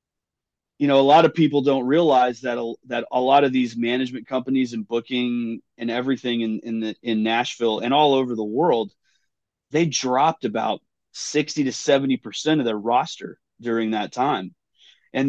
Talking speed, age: 175 wpm, 30-49